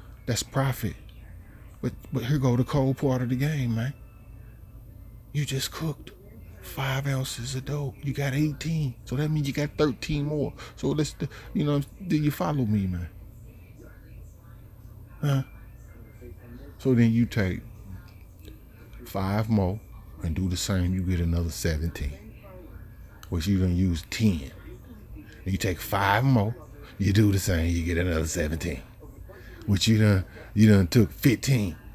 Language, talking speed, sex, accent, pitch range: English, 145 wpm, male, American, 95-120 Hz